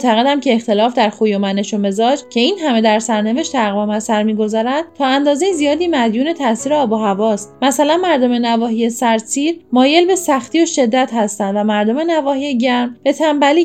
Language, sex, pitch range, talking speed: Persian, female, 220-285 Hz, 185 wpm